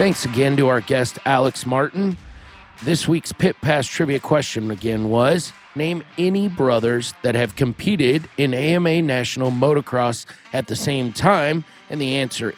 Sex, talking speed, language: male, 155 wpm, English